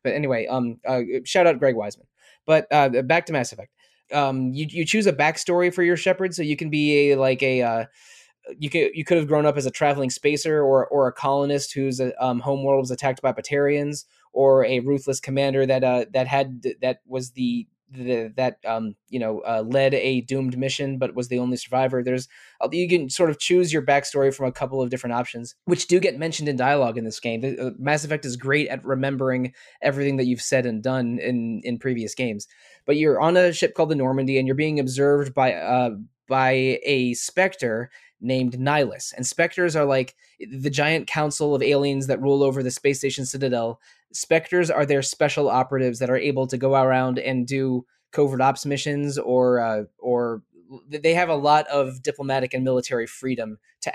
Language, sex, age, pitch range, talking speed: English, male, 20-39, 125-145 Hz, 200 wpm